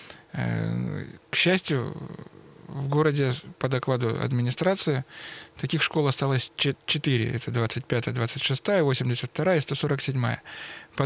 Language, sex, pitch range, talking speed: Russian, male, 125-150 Hz, 100 wpm